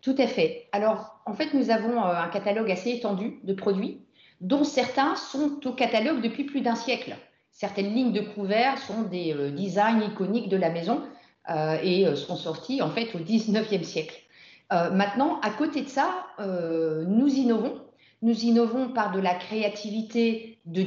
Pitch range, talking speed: 195-245 Hz, 170 wpm